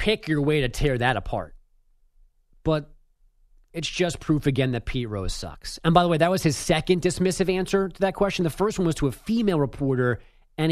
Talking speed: 215 wpm